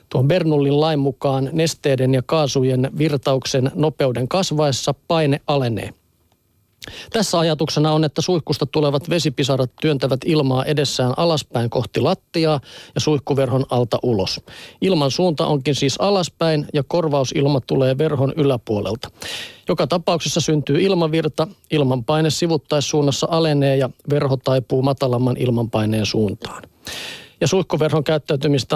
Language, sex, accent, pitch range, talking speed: Finnish, male, native, 130-160 Hz, 115 wpm